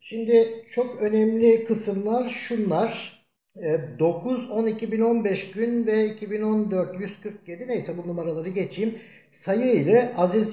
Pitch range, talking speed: 150-215 Hz, 110 wpm